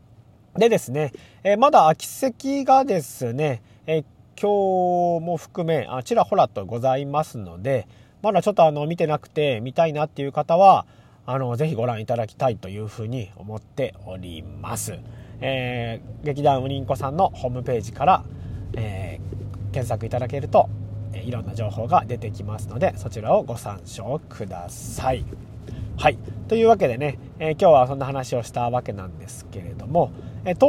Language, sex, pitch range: Japanese, male, 110-150 Hz